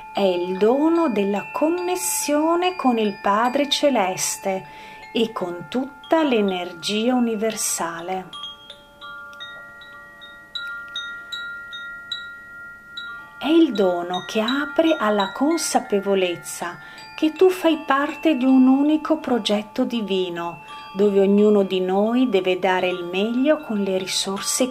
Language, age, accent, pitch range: Italian, 40-59, native, 190-290 Hz